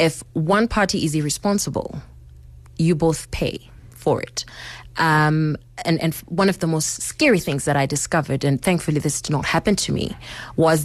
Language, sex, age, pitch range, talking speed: English, female, 20-39, 140-180 Hz, 170 wpm